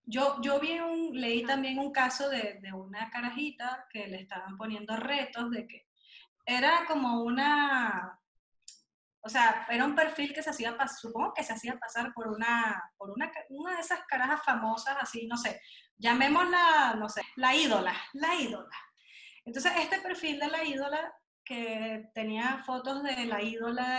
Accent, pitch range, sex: American, 225-280 Hz, female